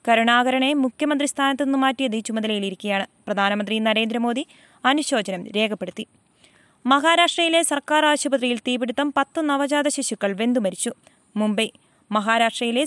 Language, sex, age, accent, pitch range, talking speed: Malayalam, female, 20-39, native, 225-275 Hz, 85 wpm